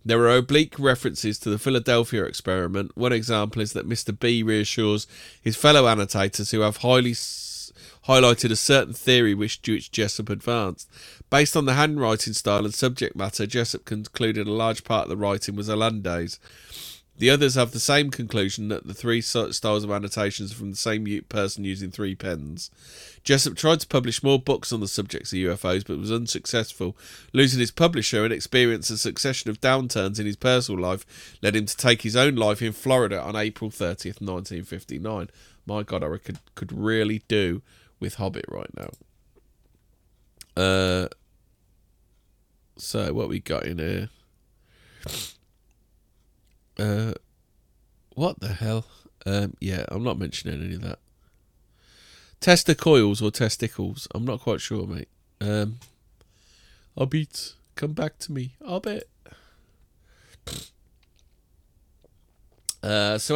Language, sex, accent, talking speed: English, male, British, 150 wpm